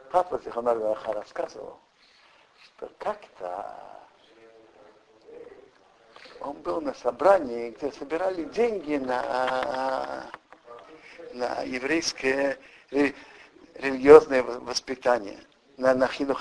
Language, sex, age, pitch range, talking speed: Russian, male, 60-79, 140-210 Hz, 75 wpm